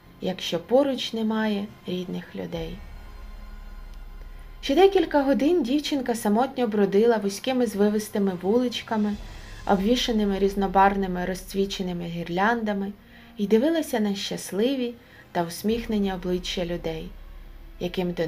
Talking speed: 90 wpm